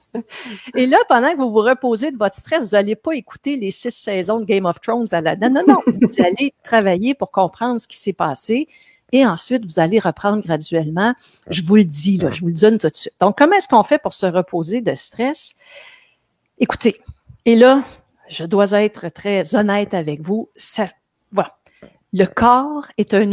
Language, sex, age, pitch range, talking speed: French, female, 50-69, 185-250 Hz, 200 wpm